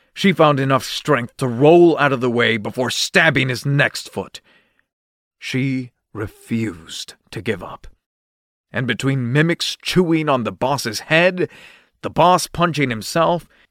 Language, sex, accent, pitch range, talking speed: English, male, American, 115-160 Hz, 140 wpm